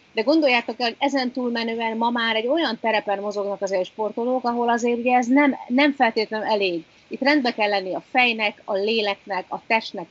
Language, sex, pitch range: Hungarian, female, 190-230 Hz